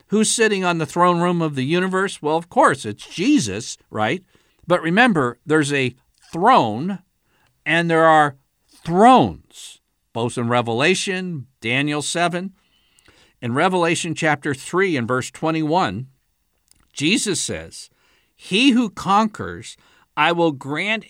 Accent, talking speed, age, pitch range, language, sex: American, 125 wpm, 60-79, 145-210 Hz, English, male